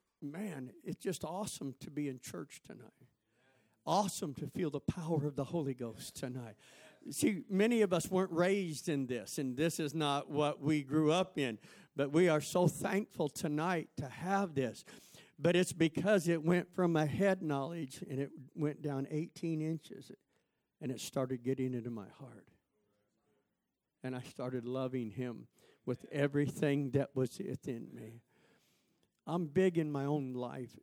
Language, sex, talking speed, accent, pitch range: English, male, 165 wpm, American, 125-160 Hz